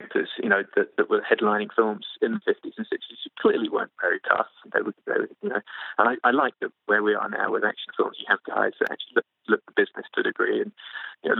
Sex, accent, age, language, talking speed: male, British, 20-39, English, 265 wpm